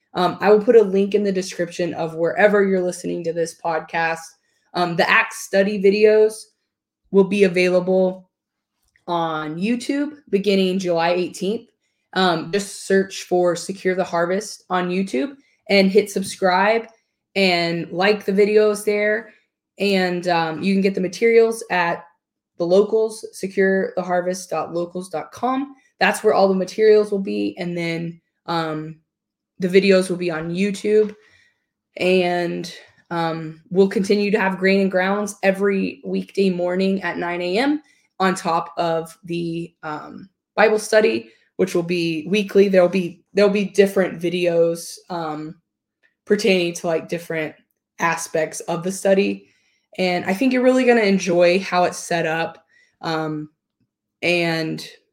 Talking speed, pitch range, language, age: 140 wpm, 170-205 Hz, English, 20-39